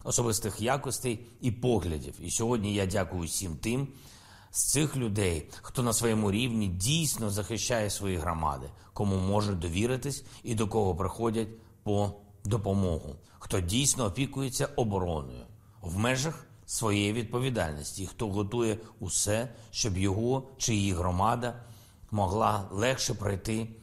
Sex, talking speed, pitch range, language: male, 125 wpm, 100-120 Hz, Ukrainian